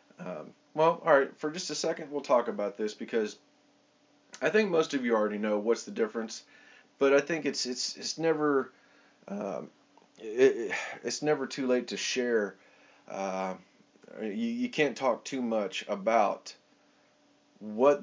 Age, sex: 30-49, male